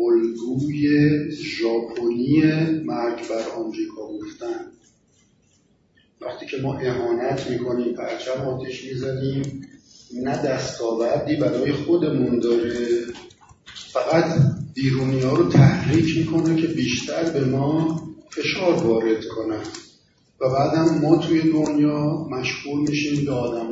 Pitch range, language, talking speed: 125-165 Hz, Persian, 105 wpm